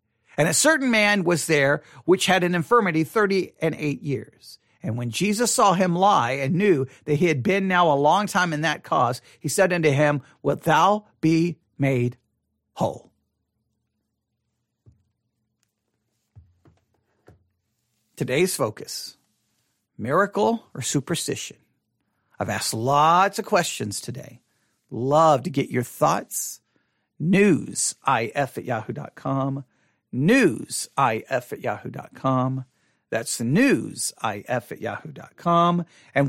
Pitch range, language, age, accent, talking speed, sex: 130-185 Hz, English, 50-69, American, 115 wpm, male